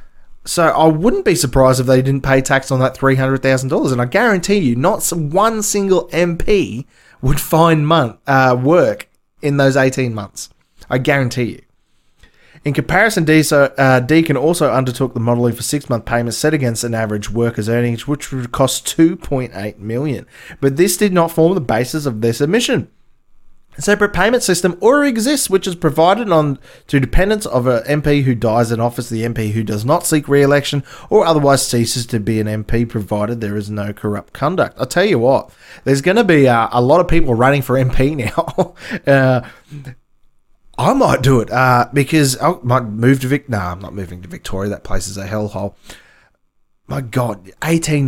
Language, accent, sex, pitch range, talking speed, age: English, Australian, male, 115-155 Hz, 185 wpm, 20-39